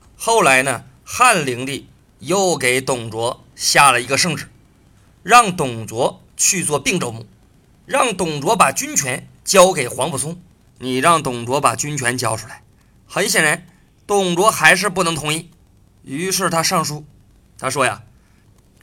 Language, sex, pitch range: Chinese, male, 125-180 Hz